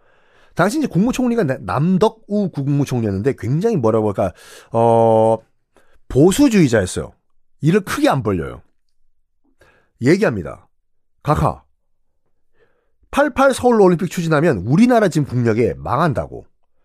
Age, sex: 30-49, male